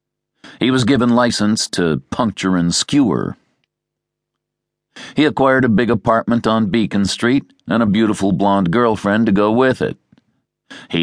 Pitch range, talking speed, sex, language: 80-110 Hz, 140 wpm, male, English